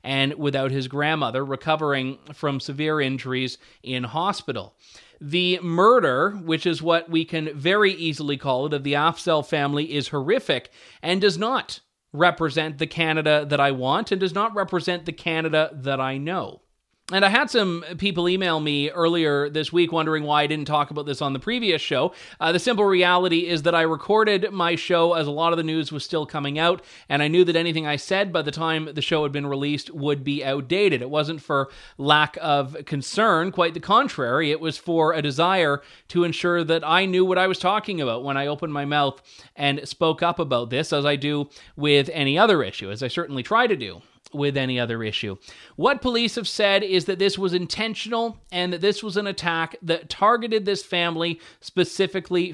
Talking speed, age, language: 200 wpm, 30-49, English